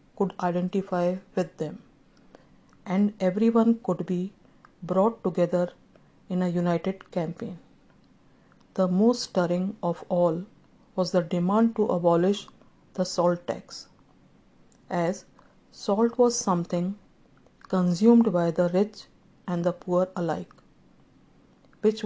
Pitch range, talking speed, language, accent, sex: 175-205 Hz, 110 wpm, English, Indian, female